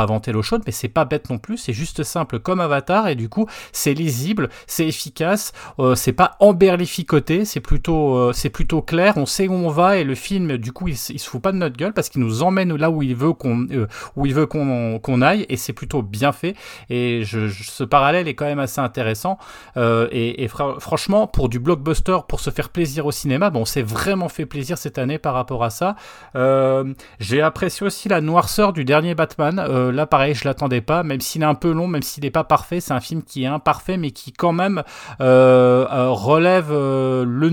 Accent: French